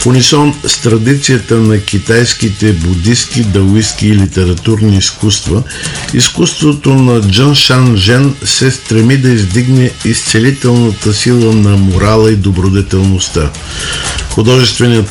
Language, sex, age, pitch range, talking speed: Bulgarian, male, 50-69, 105-130 Hz, 105 wpm